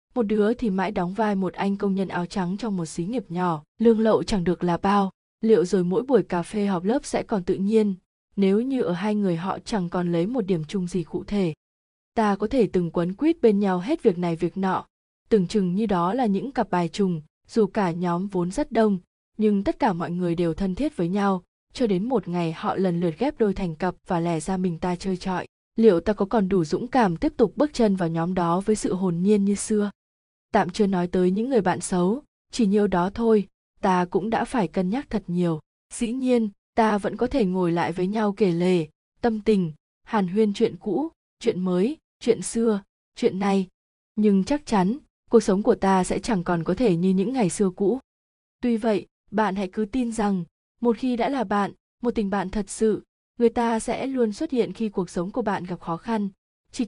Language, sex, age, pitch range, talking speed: Vietnamese, female, 20-39, 180-225 Hz, 230 wpm